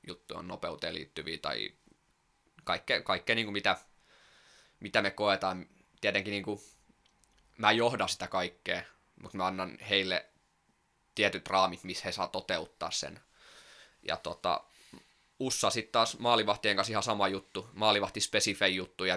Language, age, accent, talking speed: Finnish, 20-39, native, 140 wpm